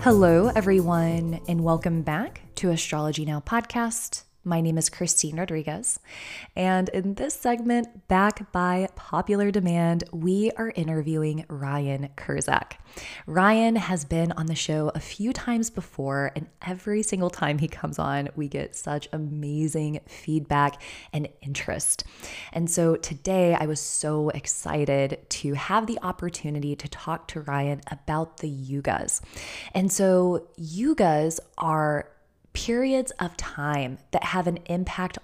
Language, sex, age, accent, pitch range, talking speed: English, female, 20-39, American, 150-190 Hz, 135 wpm